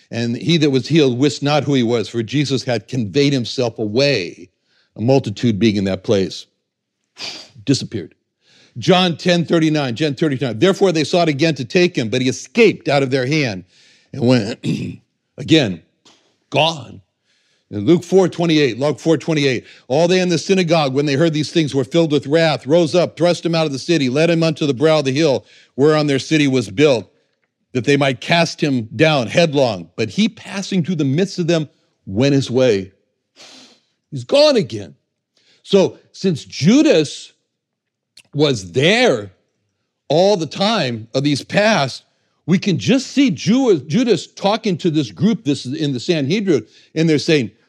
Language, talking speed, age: English, 170 wpm, 60-79